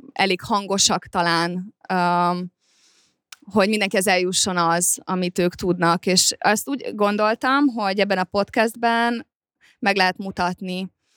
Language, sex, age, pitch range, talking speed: Hungarian, female, 20-39, 180-205 Hz, 120 wpm